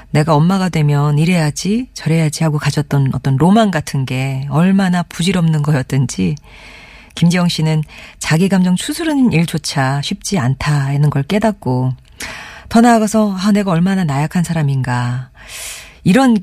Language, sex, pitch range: Korean, female, 140-185 Hz